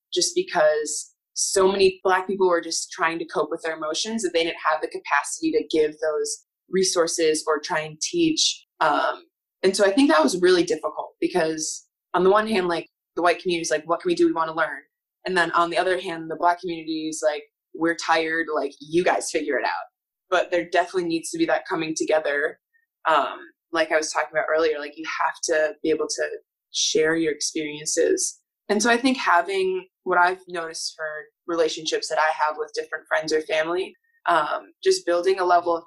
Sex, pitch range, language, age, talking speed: female, 160-235 Hz, English, 20-39, 210 wpm